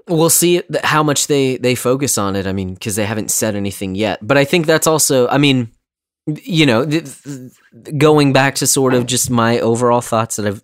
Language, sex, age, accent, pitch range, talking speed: English, male, 30-49, American, 105-140 Hz, 220 wpm